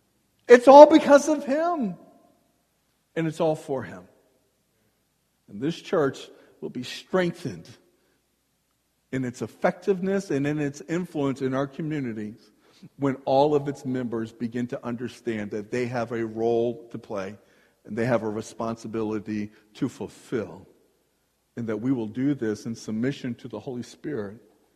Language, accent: English, American